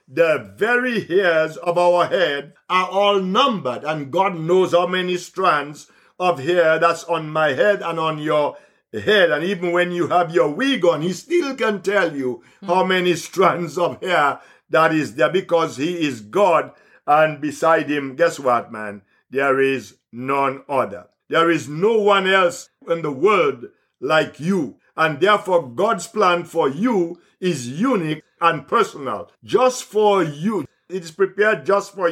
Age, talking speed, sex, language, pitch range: 50-69, 165 wpm, male, English, 160-195 Hz